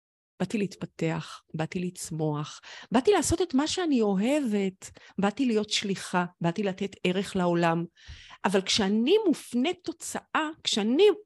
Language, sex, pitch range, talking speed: Hebrew, female, 190-265 Hz, 115 wpm